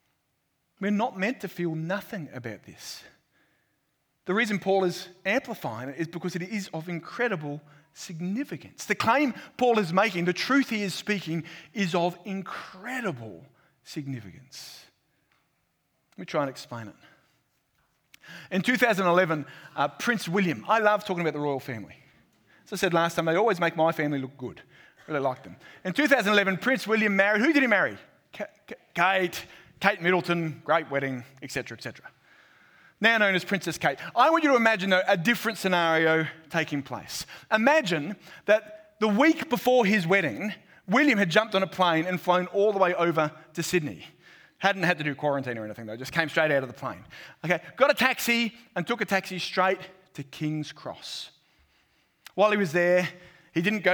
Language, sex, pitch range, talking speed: English, male, 155-210 Hz, 175 wpm